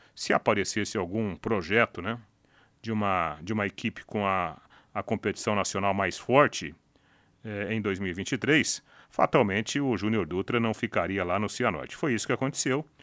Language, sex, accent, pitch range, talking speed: Portuguese, male, Brazilian, 100-130 Hz, 145 wpm